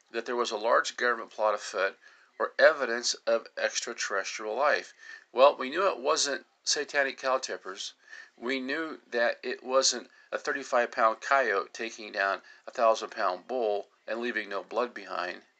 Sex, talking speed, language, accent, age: male, 150 wpm, English, American, 50-69